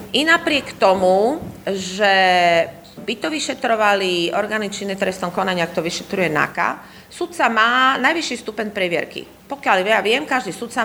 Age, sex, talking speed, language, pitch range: 40-59, female, 125 wpm, Slovak, 185-245 Hz